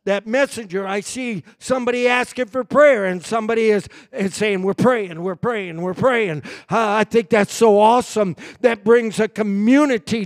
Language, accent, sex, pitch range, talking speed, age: English, American, male, 200-255 Hz, 170 wpm, 50-69